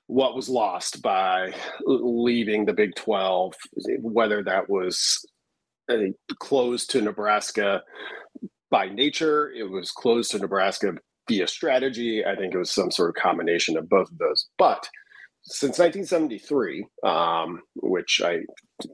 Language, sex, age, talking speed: English, male, 40-59, 135 wpm